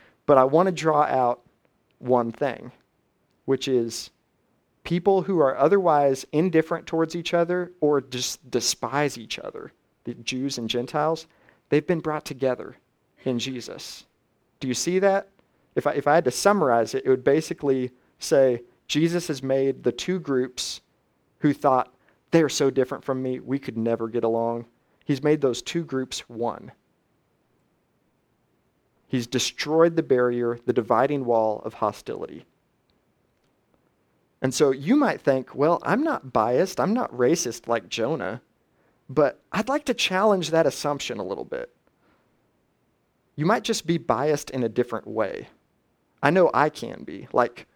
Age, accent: 40-59, American